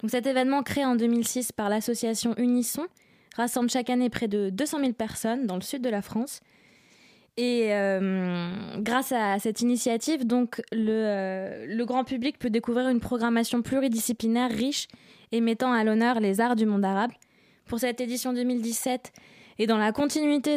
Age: 20-39